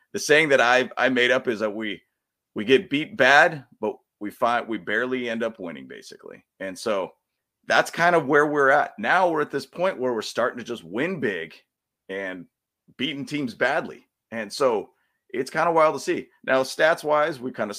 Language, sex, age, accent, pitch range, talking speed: English, male, 30-49, American, 120-150 Hz, 200 wpm